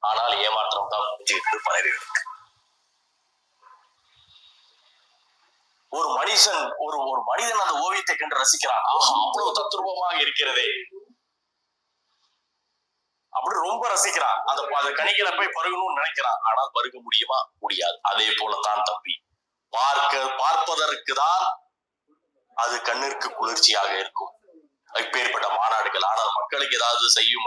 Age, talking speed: 30-49, 80 wpm